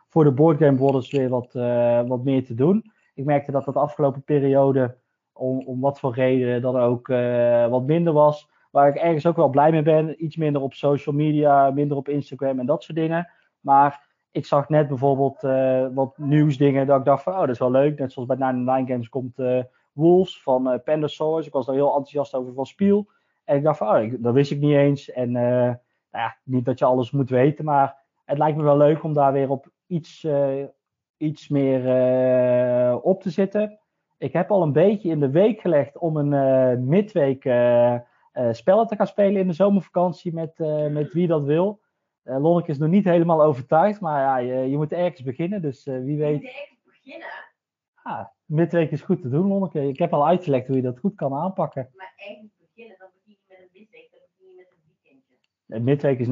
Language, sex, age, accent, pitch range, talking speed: Dutch, male, 20-39, Dutch, 130-170 Hz, 225 wpm